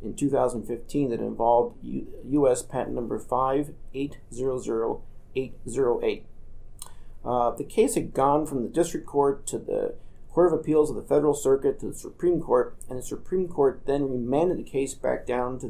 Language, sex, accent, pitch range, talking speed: English, male, American, 125-155 Hz, 155 wpm